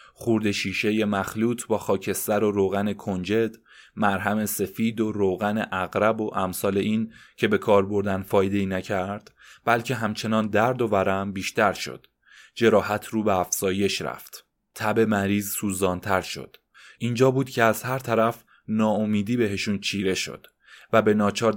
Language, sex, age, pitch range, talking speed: Persian, male, 20-39, 100-115 Hz, 145 wpm